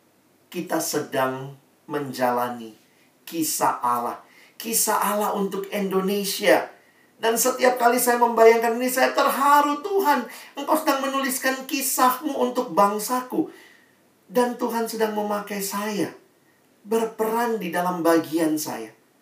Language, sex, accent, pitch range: Indonesian, male, native, 165-250 Hz